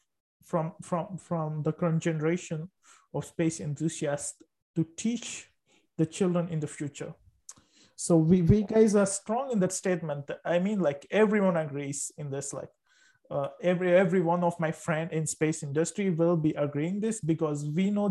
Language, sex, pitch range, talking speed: English, male, 160-195 Hz, 165 wpm